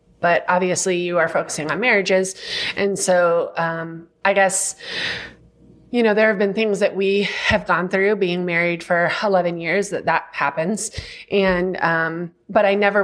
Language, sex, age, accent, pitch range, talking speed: English, female, 20-39, American, 165-195 Hz, 165 wpm